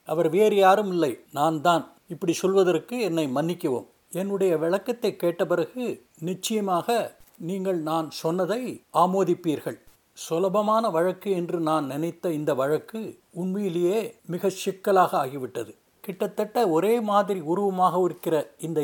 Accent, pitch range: native, 165-210 Hz